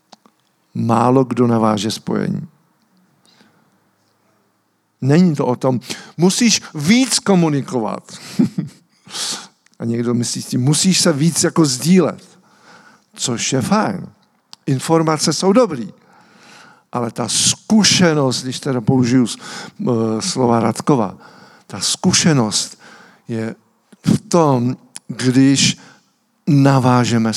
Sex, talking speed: male, 90 wpm